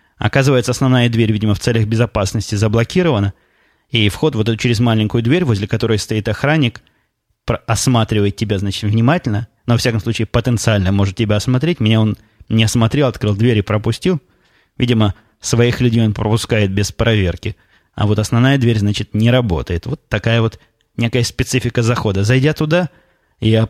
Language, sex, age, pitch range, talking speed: Russian, male, 20-39, 110-125 Hz, 155 wpm